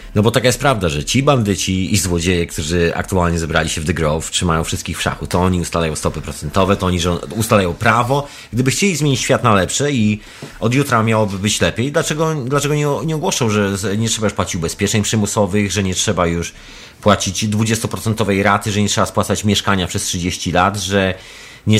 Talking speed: 195 wpm